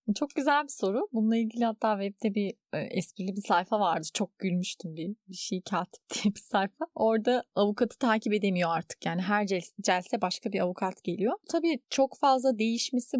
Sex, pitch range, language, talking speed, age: female, 190-245 Hz, Turkish, 175 wpm, 30-49